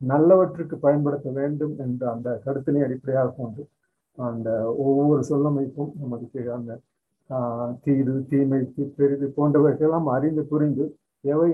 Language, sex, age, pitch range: Tamil, male, 50-69, 130-150 Hz